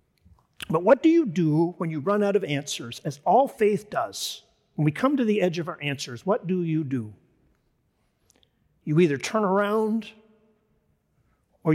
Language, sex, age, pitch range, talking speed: English, male, 40-59, 150-200 Hz, 170 wpm